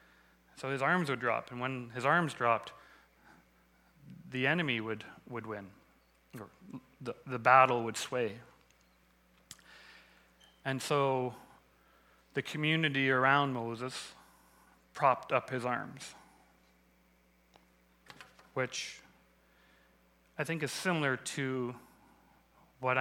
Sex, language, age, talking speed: male, English, 30-49, 100 wpm